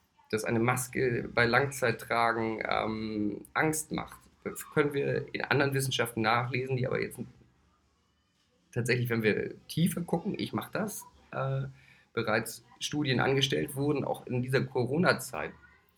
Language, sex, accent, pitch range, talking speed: English, male, German, 120-175 Hz, 130 wpm